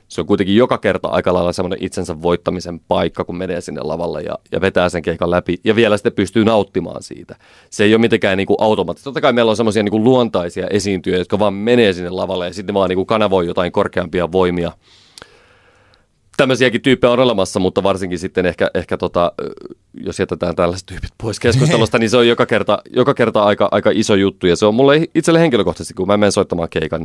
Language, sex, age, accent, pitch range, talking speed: Finnish, male, 30-49, native, 90-110 Hz, 205 wpm